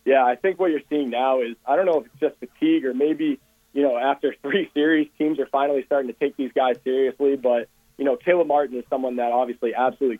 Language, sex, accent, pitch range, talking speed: English, male, American, 125-145 Hz, 240 wpm